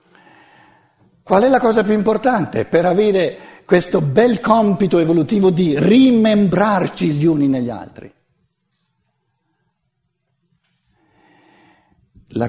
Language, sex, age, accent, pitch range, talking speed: Italian, male, 50-69, native, 120-195 Hz, 90 wpm